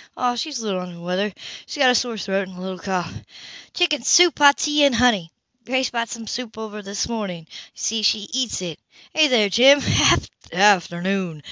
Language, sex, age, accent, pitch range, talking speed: English, female, 20-39, American, 195-255 Hz, 195 wpm